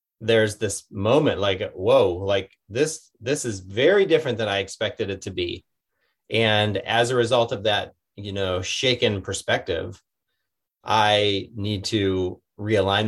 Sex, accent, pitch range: male, American, 95-115 Hz